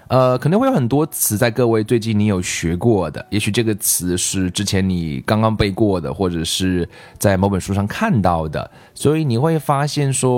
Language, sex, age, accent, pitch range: Chinese, male, 20-39, native, 100-130 Hz